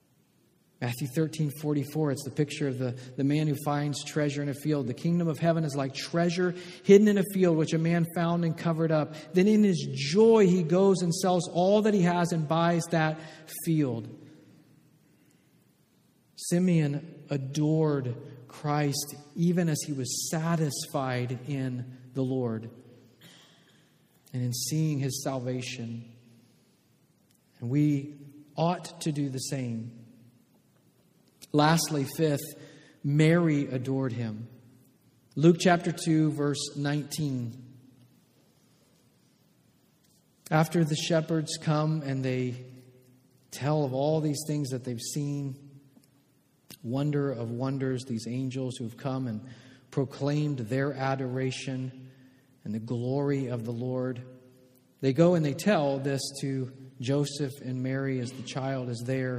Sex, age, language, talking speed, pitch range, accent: male, 40-59, English, 130 wpm, 130-160 Hz, American